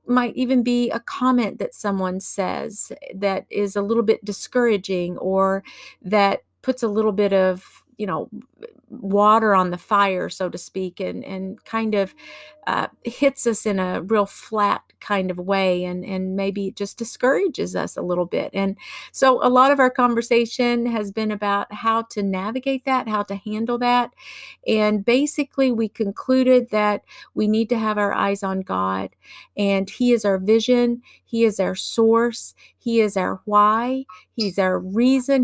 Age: 50-69